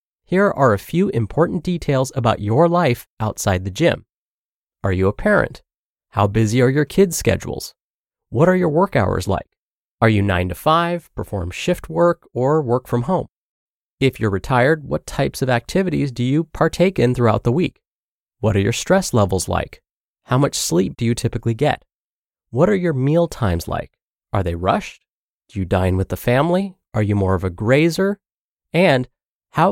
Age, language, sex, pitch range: 30-49, English, male, 105-160 Hz